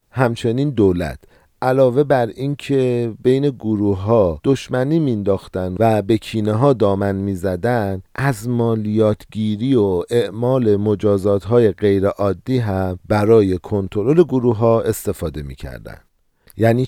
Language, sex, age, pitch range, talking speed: Persian, male, 50-69, 95-130 Hz, 110 wpm